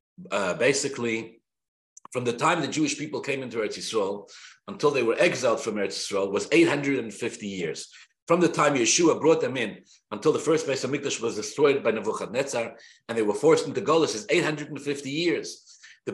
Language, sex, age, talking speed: English, male, 50-69, 180 wpm